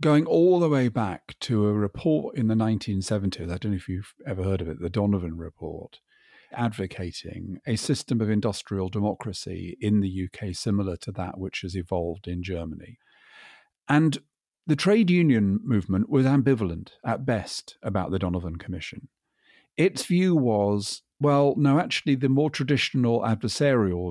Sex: male